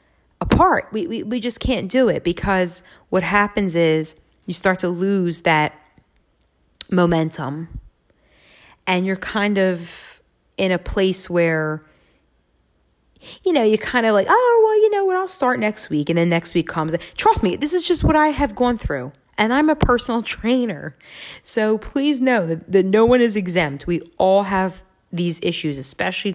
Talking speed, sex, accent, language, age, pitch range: 175 wpm, female, American, English, 30-49, 175-255 Hz